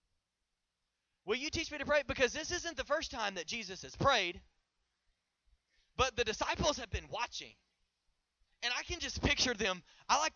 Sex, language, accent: male, English, American